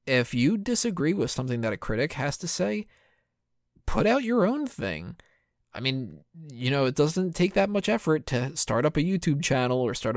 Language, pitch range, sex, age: English, 125-165 Hz, male, 20-39